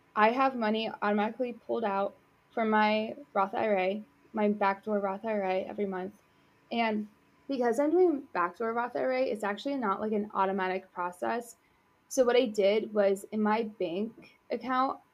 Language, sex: English, female